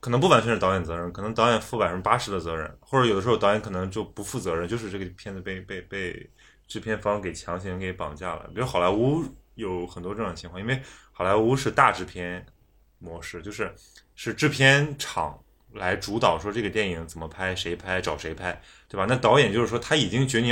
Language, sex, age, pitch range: Chinese, male, 20-39, 95-125 Hz